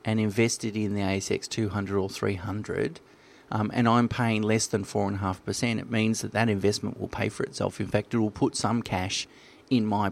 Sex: male